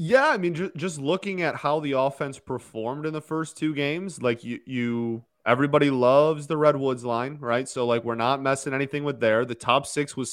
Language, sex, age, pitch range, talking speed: English, male, 20-39, 115-150 Hz, 210 wpm